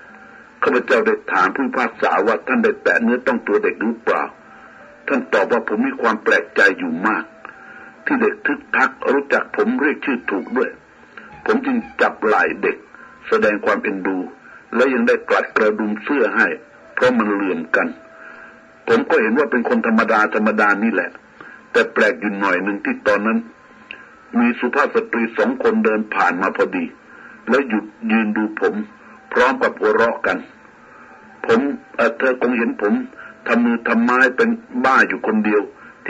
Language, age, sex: Thai, 60-79, male